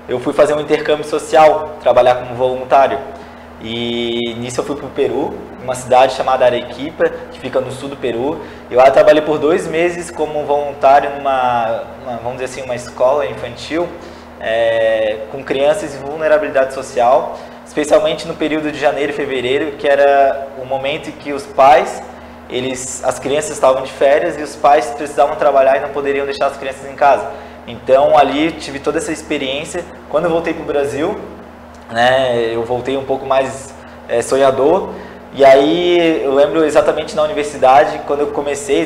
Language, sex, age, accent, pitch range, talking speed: Portuguese, male, 20-39, Brazilian, 130-150 Hz, 175 wpm